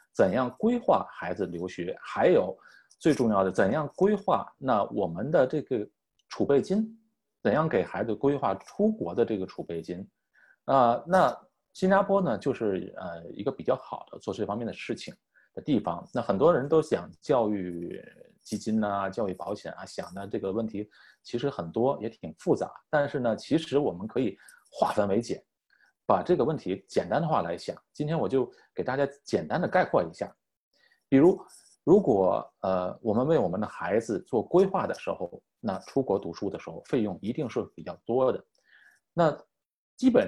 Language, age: Chinese, 30-49